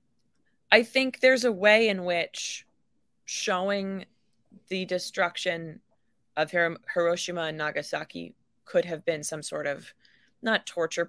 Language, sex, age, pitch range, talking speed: English, female, 20-39, 165-200 Hz, 120 wpm